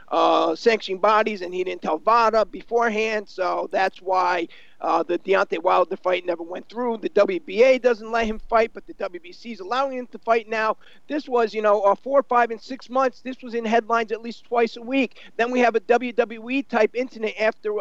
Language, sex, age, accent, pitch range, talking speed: English, male, 50-69, American, 205-260 Hz, 205 wpm